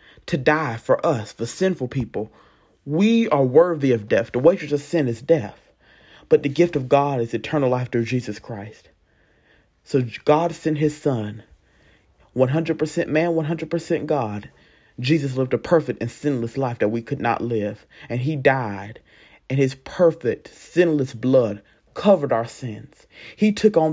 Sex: male